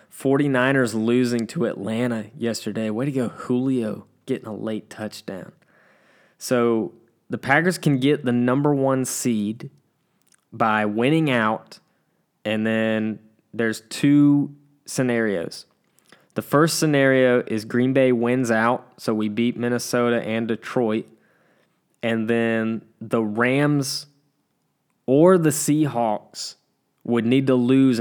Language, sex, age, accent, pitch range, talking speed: English, male, 20-39, American, 110-140 Hz, 120 wpm